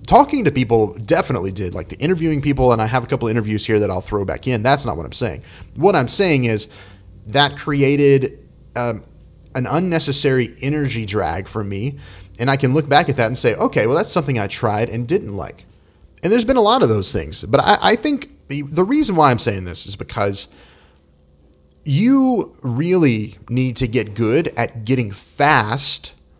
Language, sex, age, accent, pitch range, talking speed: English, male, 30-49, American, 110-150 Hz, 200 wpm